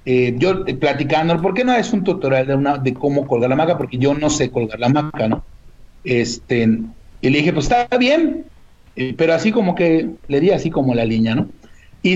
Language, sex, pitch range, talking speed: Spanish, male, 130-185 Hz, 220 wpm